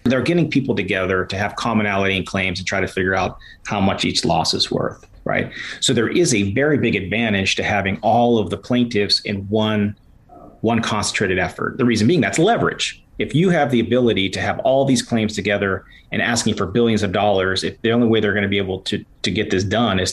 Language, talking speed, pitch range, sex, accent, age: English, 225 wpm, 100-115 Hz, male, American, 40-59